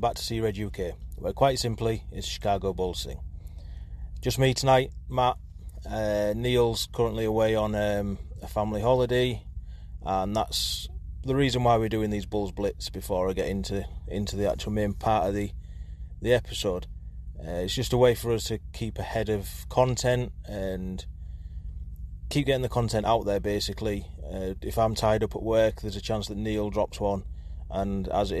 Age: 30-49